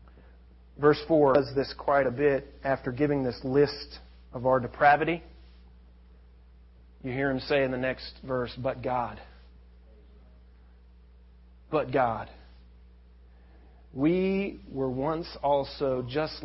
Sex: male